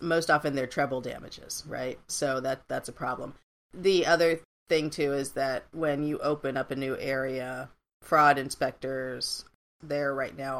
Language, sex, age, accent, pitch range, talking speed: English, female, 40-59, American, 130-170 Hz, 165 wpm